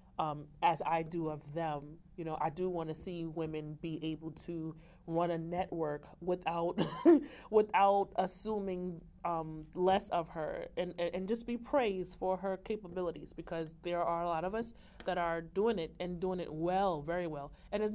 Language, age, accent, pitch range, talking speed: English, 30-49, American, 160-190 Hz, 180 wpm